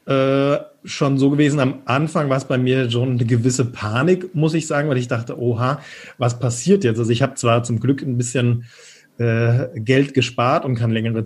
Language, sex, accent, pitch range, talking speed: German, male, German, 120-140 Hz, 205 wpm